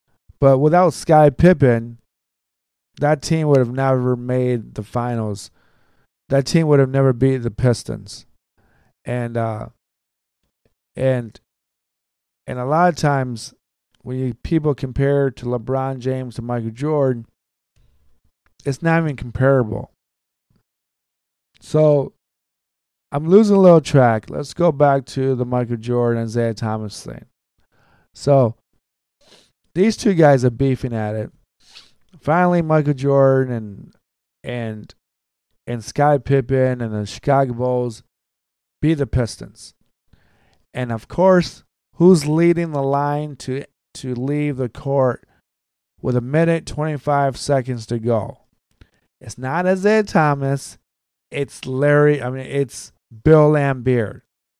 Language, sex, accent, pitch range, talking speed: English, male, American, 110-145 Hz, 125 wpm